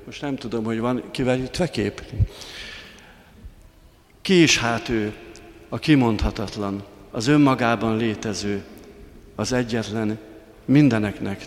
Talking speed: 105 wpm